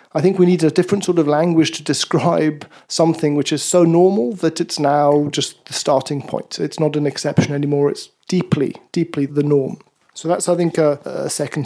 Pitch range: 145-175 Hz